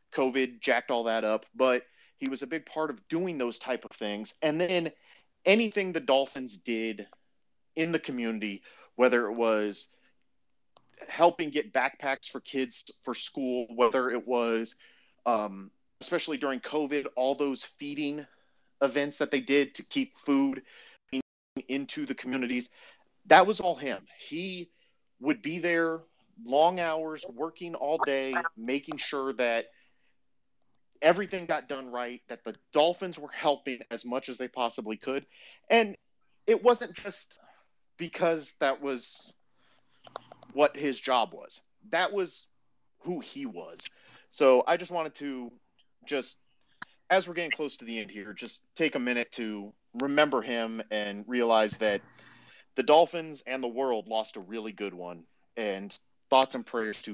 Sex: male